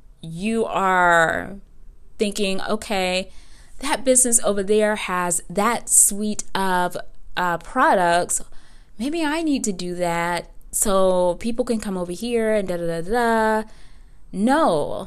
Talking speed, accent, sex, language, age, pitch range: 125 wpm, American, female, English, 20-39, 175-220 Hz